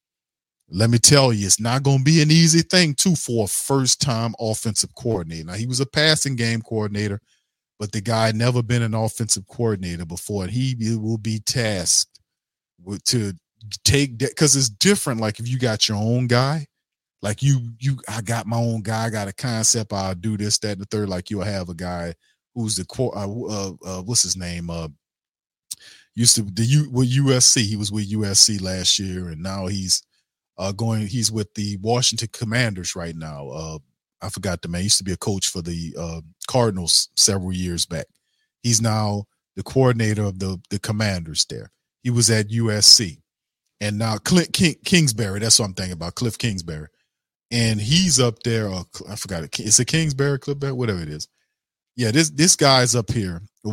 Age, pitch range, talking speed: 40-59, 95-125 Hz, 195 wpm